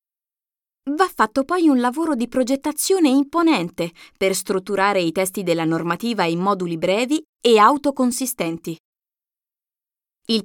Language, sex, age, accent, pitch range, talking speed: Italian, female, 20-39, native, 180-295 Hz, 115 wpm